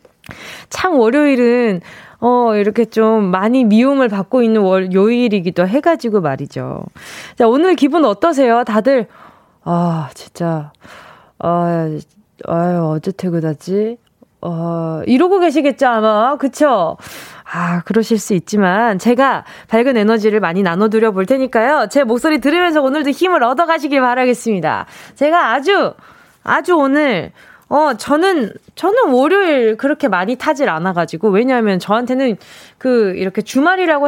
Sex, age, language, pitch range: female, 20-39, Korean, 210-305 Hz